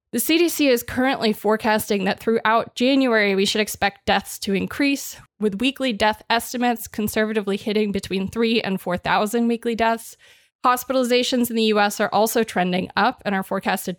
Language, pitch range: English, 200-250 Hz